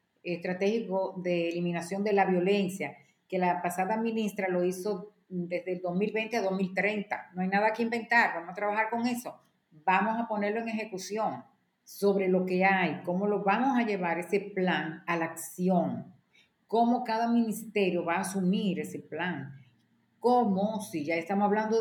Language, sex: Spanish, female